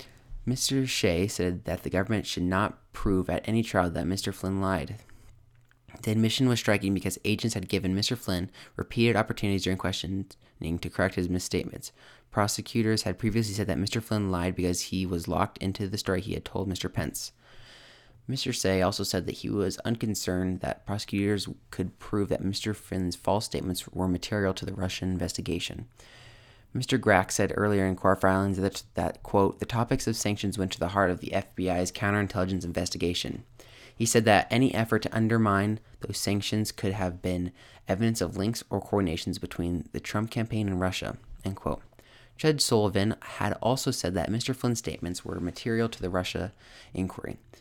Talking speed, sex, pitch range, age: 175 wpm, male, 90-115 Hz, 20-39